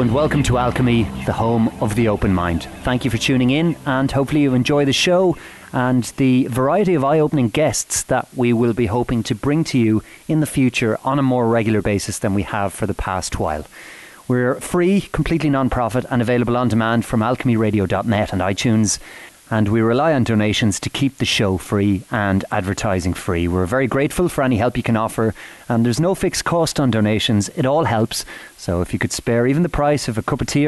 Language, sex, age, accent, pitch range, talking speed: English, male, 30-49, Irish, 110-140 Hz, 210 wpm